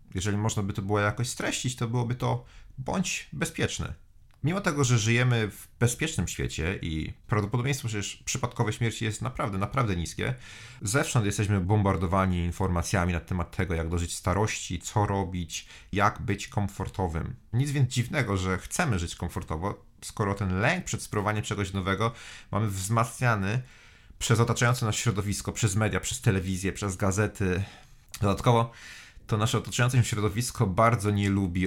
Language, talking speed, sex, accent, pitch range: Polish, 150 wpm, male, native, 95-120 Hz